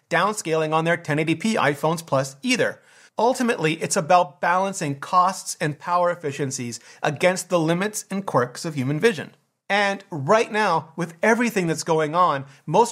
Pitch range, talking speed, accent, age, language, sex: 155-210 Hz, 150 wpm, American, 30-49, English, male